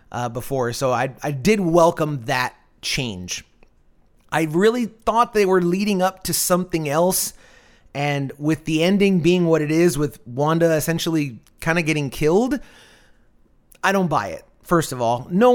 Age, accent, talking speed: 30-49, American, 160 wpm